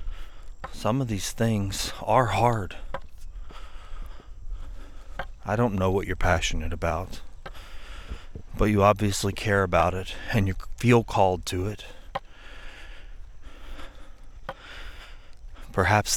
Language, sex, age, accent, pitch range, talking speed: English, male, 30-49, American, 80-100 Hz, 95 wpm